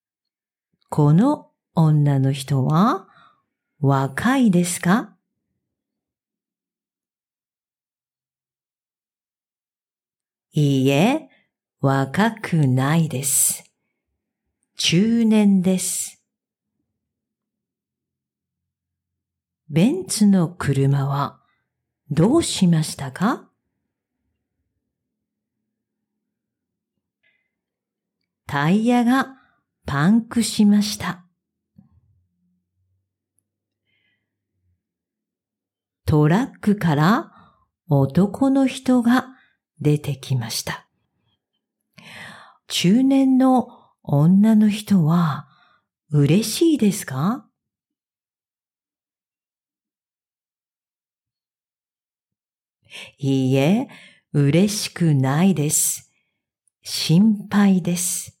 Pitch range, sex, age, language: 135-210 Hz, female, 50-69, English